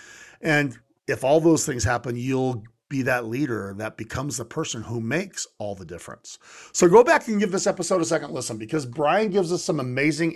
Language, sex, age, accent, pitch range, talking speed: English, male, 40-59, American, 130-180 Hz, 205 wpm